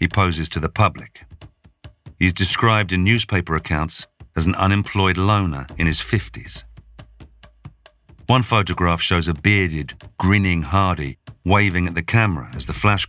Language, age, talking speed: English, 50-69, 140 wpm